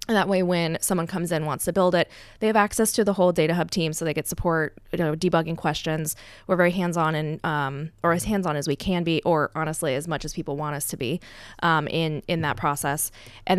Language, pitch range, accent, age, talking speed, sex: Hebrew, 150-190 Hz, American, 20-39, 245 wpm, female